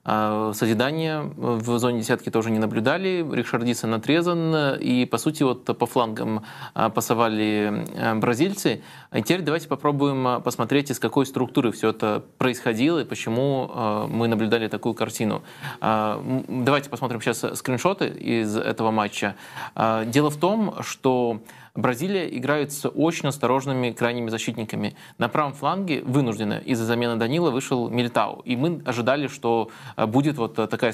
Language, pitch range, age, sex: Russian, 115-140 Hz, 20-39, male